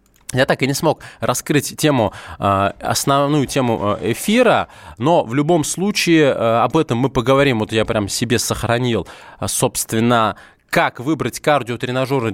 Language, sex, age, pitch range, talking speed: Russian, male, 20-39, 110-145 Hz, 125 wpm